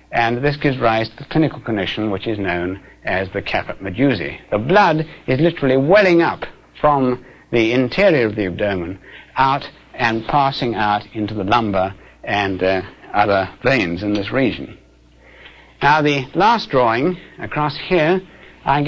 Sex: male